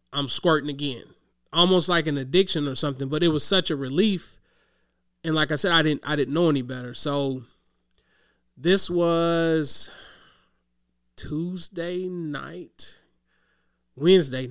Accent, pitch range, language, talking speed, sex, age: American, 130-165 Hz, English, 130 wpm, male, 30-49